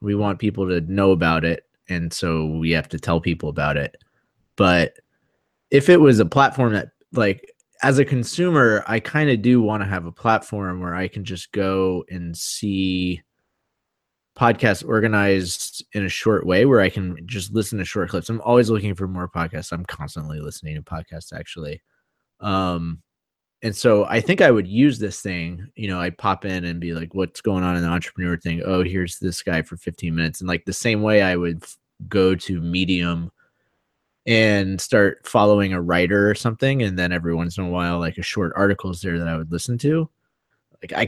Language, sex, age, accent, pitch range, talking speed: English, male, 20-39, American, 85-105 Hz, 200 wpm